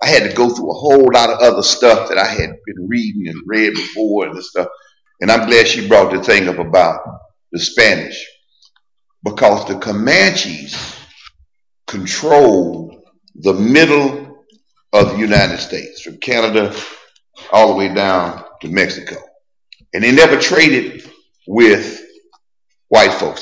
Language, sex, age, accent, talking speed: English, male, 50-69, American, 150 wpm